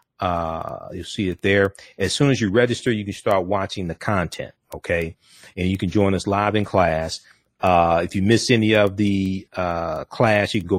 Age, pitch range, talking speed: 40-59, 90-105 Hz, 205 wpm